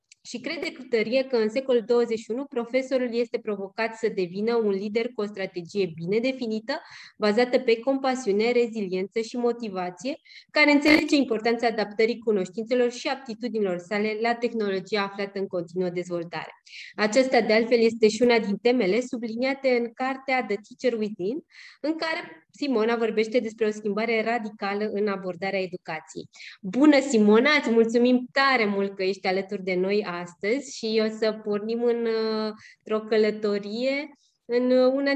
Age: 20-39